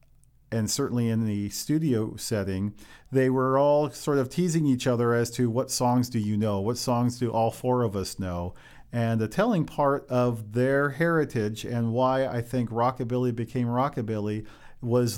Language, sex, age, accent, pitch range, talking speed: English, male, 40-59, American, 110-130 Hz, 175 wpm